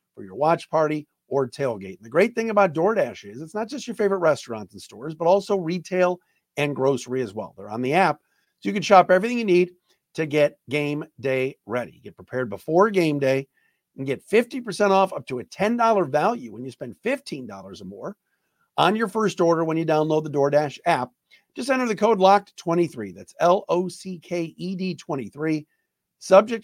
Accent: American